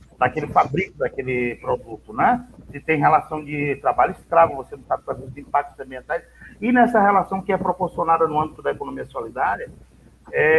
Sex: male